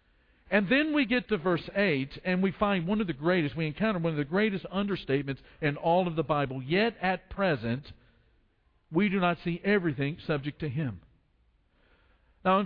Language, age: English, 50-69